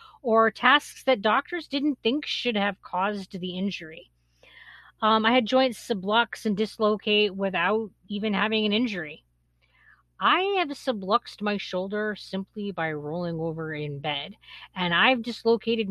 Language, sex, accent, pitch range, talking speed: English, female, American, 175-225 Hz, 140 wpm